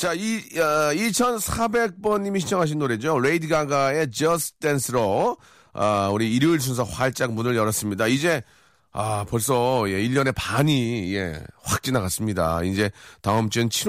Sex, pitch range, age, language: male, 110-155 Hz, 40-59, Korean